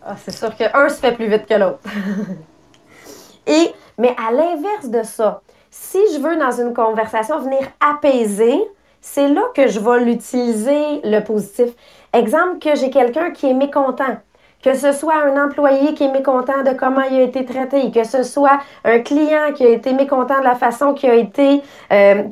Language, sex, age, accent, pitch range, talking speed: English, female, 30-49, Canadian, 225-285 Hz, 185 wpm